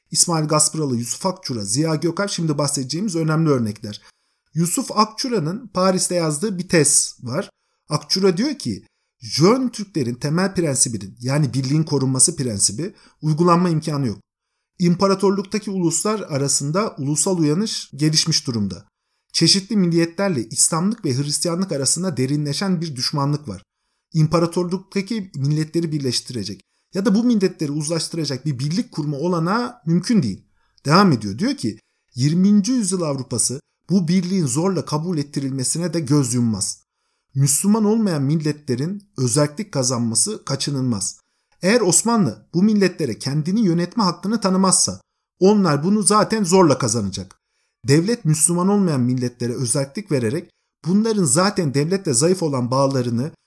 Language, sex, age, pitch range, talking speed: Turkish, male, 50-69, 135-190 Hz, 120 wpm